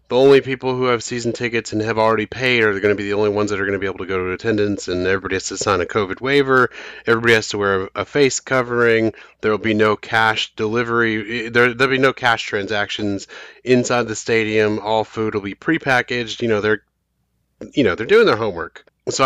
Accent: American